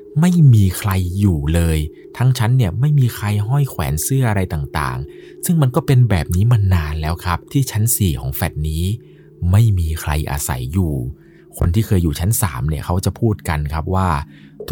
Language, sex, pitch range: Thai, male, 85-120 Hz